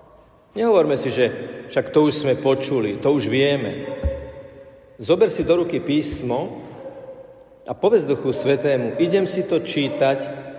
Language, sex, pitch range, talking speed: Slovak, male, 130-175 Hz, 135 wpm